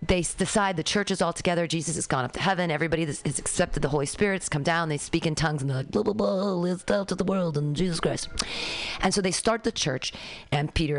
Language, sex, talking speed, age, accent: English, female, 260 wpm, 40-59, American